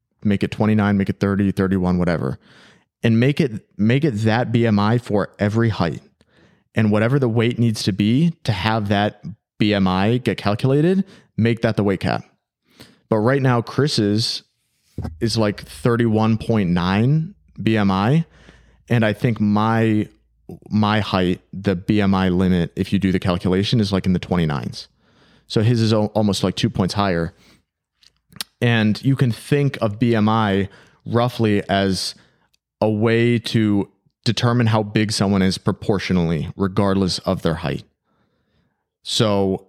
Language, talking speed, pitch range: English, 140 wpm, 95-115 Hz